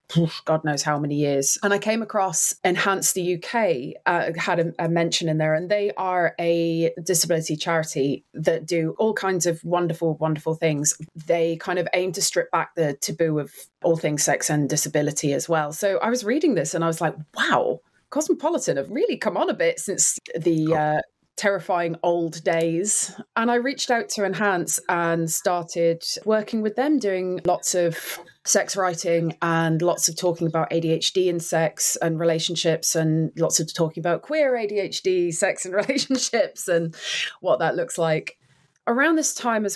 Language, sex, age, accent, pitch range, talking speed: English, female, 20-39, British, 165-195 Hz, 180 wpm